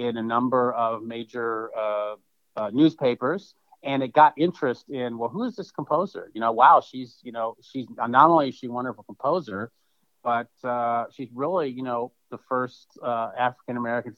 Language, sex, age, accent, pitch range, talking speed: English, male, 40-59, American, 115-135 Hz, 175 wpm